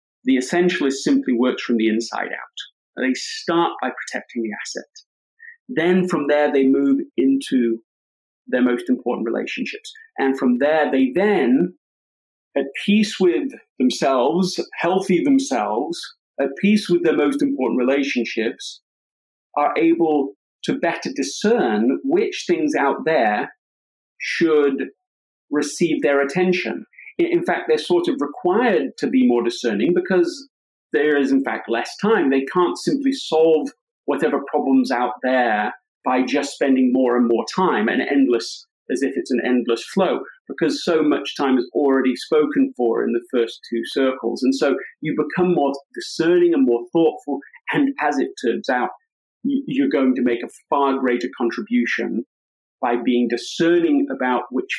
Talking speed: 150 wpm